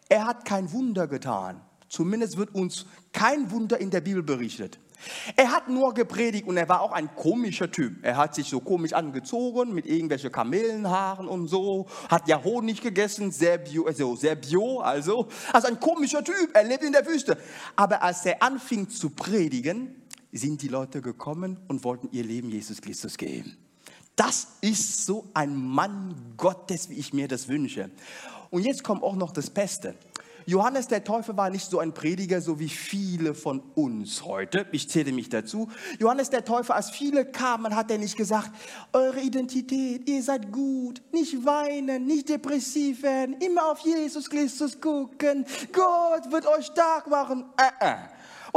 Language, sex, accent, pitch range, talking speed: German, male, German, 175-265 Hz, 175 wpm